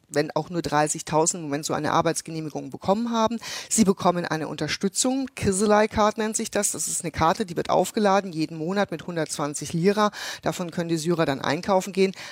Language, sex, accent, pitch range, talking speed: German, female, German, 165-210 Hz, 190 wpm